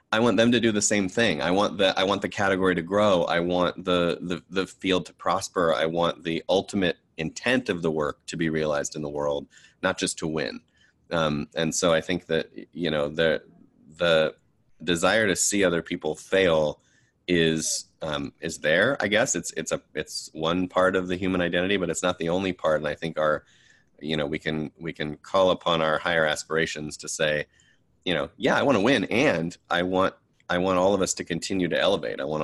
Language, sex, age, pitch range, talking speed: English, male, 30-49, 75-90 Hz, 220 wpm